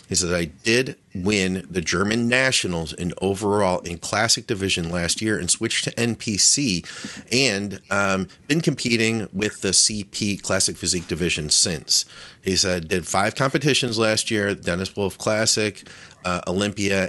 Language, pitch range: English, 90-110 Hz